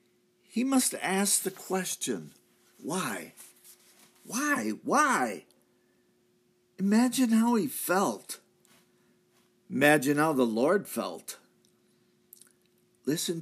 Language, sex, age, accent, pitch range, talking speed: English, male, 50-69, American, 130-185 Hz, 80 wpm